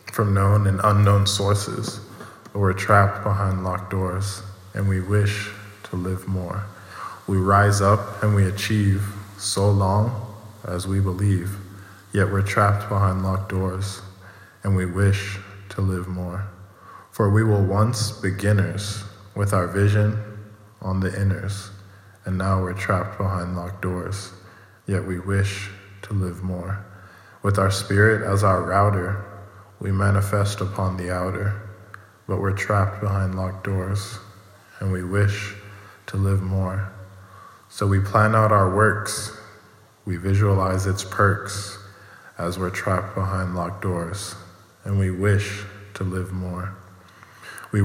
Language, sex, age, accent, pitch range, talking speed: English, male, 20-39, American, 95-105 Hz, 140 wpm